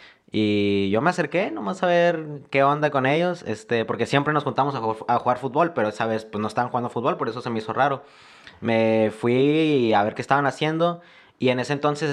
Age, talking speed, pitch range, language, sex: 20-39, 230 wpm, 110-145 Hz, Spanish, male